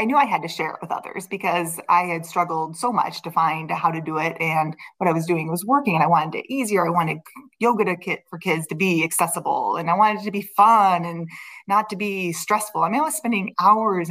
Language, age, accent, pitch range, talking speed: English, 20-39, American, 165-210 Hz, 255 wpm